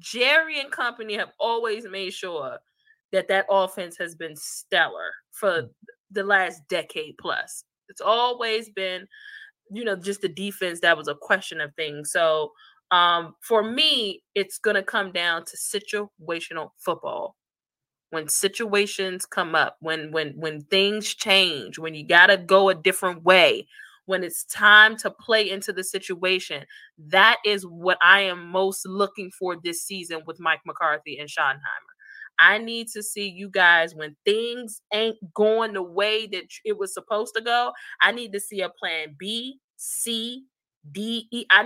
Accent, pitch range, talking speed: American, 175-220 Hz, 160 wpm